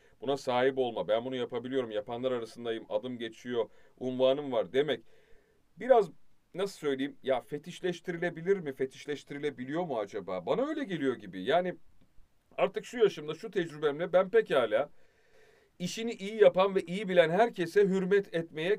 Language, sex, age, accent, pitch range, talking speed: Turkish, male, 40-59, native, 140-195 Hz, 135 wpm